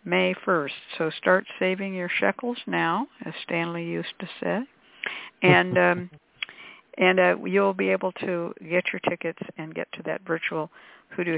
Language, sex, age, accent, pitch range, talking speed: English, female, 60-79, American, 170-205 Hz, 160 wpm